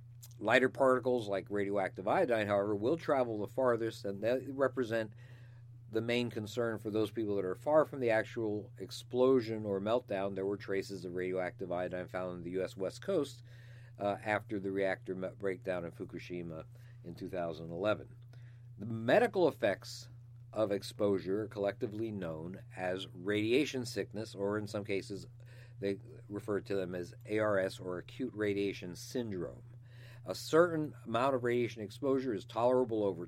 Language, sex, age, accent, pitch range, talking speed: English, male, 50-69, American, 100-120 Hz, 150 wpm